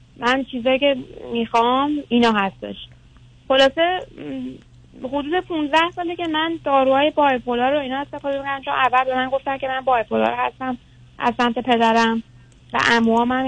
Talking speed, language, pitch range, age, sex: 145 wpm, Persian, 230-275 Hz, 30-49, female